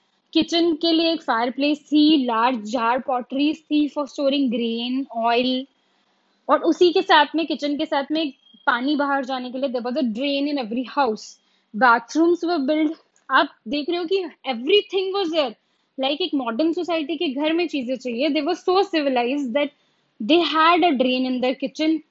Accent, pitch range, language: native, 260-315 Hz, Hindi